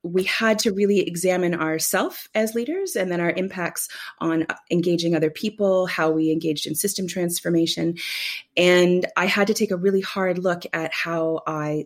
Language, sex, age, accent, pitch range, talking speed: English, female, 30-49, American, 165-210 Hz, 170 wpm